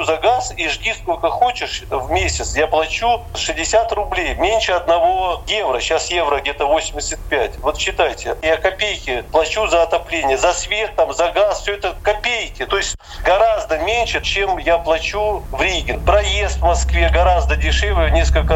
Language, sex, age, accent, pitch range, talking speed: Russian, male, 40-59, native, 145-205 Hz, 160 wpm